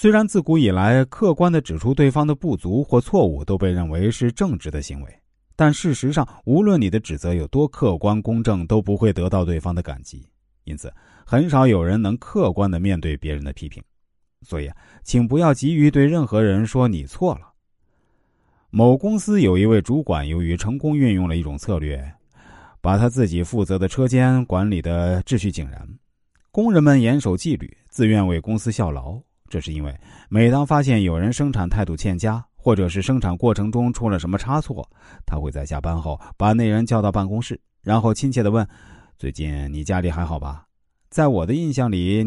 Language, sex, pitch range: Chinese, male, 90-125 Hz